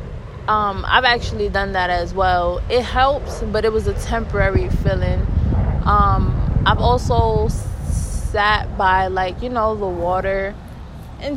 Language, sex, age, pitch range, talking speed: English, female, 20-39, 170-235 Hz, 130 wpm